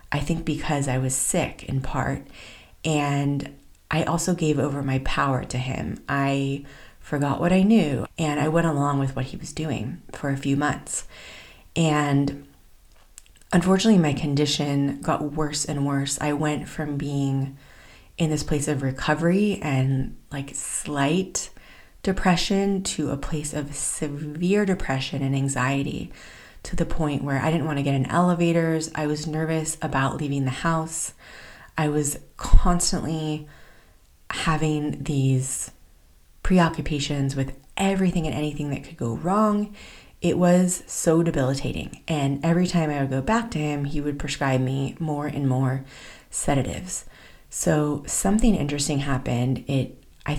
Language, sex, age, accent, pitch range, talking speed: English, female, 30-49, American, 135-160 Hz, 145 wpm